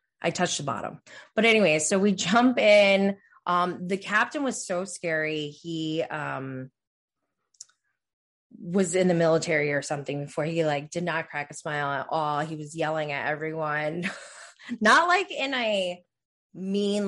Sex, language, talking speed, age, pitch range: female, English, 155 wpm, 20-39, 155-205 Hz